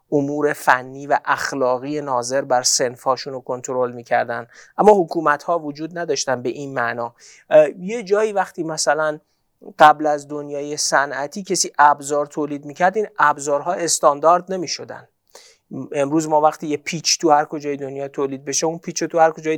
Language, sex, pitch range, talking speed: Persian, male, 145-205 Hz, 145 wpm